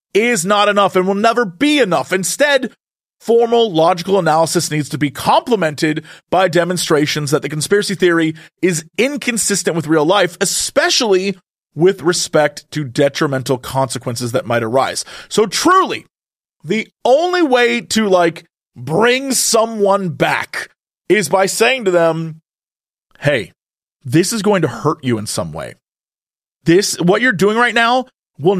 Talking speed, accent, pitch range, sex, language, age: 145 wpm, American, 150-205 Hz, male, English, 30-49